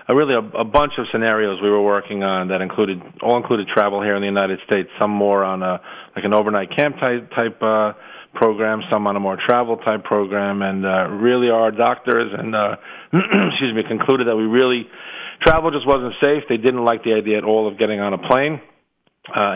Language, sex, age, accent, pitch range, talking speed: English, male, 40-59, American, 100-115 Hz, 220 wpm